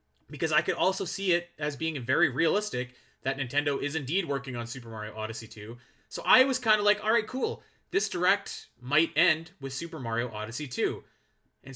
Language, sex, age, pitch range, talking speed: English, male, 30-49, 115-145 Hz, 195 wpm